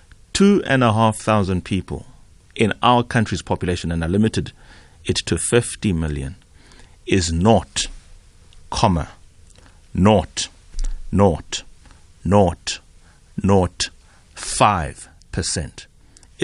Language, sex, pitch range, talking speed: English, male, 85-110 Hz, 90 wpm